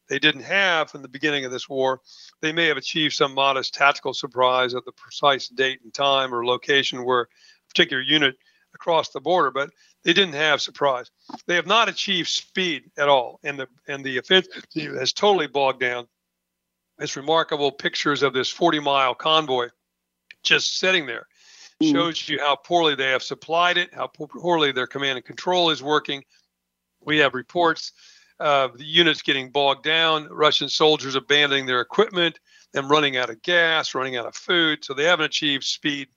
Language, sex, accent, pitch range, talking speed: English, male, American, 135-165 Hz, 180 wpm